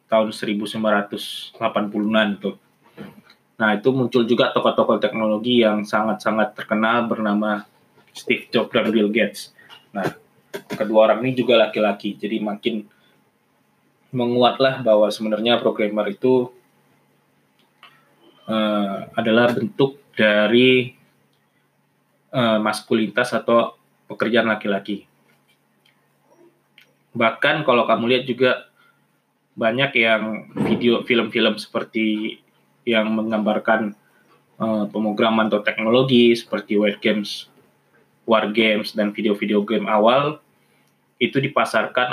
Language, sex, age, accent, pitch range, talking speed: Indonesian, male, 20-39, native, 105-115 Hz, 95 wpm